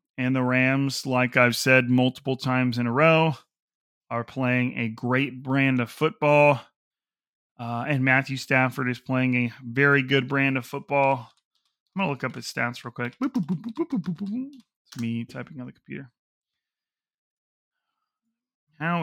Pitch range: 125-150 Hz